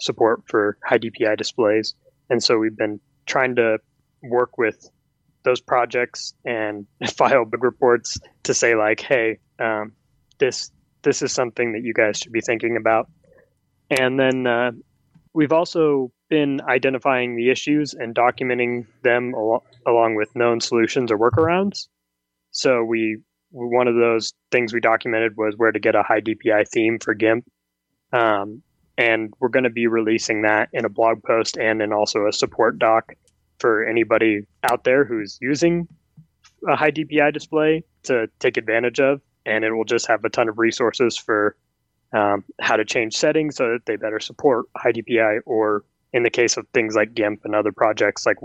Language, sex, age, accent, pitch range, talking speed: English, male, 20-39, American, 110-130 Hz, 170 wpm